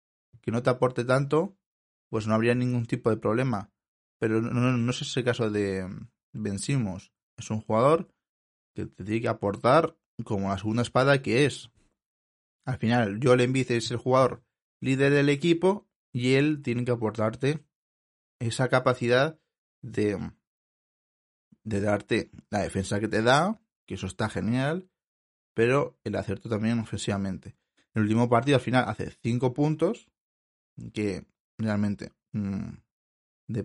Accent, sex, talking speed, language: Spanish, male, 145 wpm, Spanish